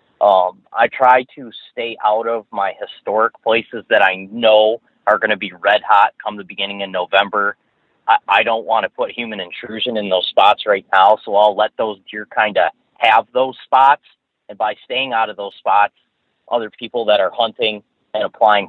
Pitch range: 100-120 Hz